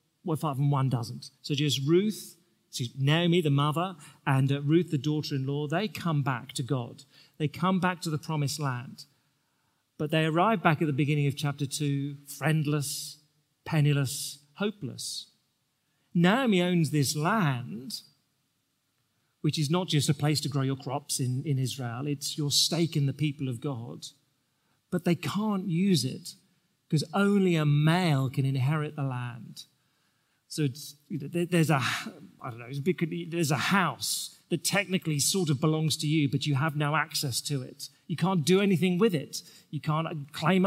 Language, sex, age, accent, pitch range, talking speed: English, male, 40-59, British, 140-170 Hz, 165 wpm